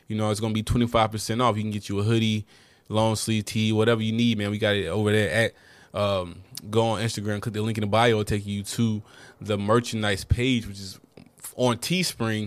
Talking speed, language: 230 wpm, English